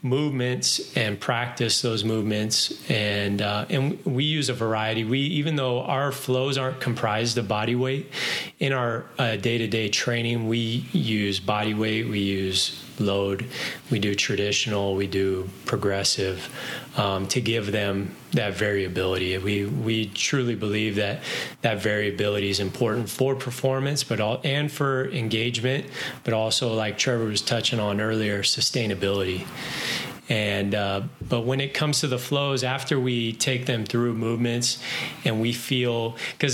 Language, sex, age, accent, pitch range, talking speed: English, male, 30-49, American, 105-130 Hz, 150 wpm